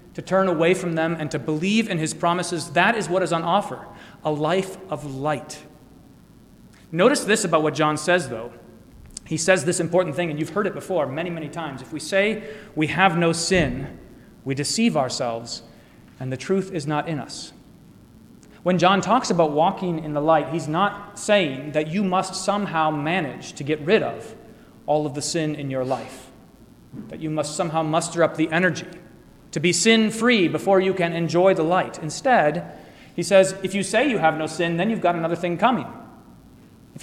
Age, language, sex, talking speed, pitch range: 30-49, English, male, 195 wpm, 155-195 Hz